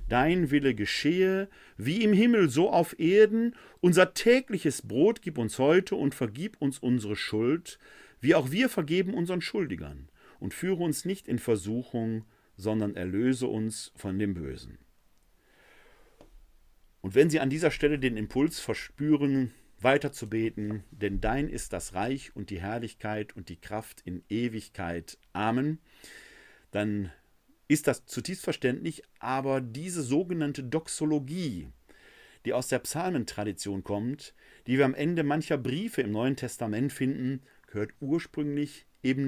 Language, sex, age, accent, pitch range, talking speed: German, male, 50-69, German, 110-160 Hz, 140 wpm